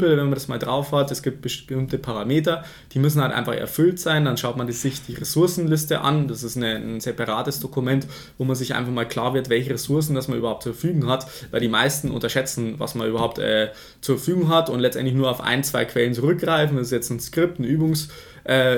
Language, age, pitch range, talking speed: German, 20-39, 120-145 Hz, 225 wpm